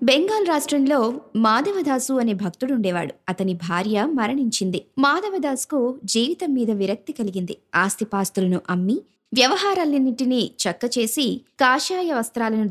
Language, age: Telugu, 20-39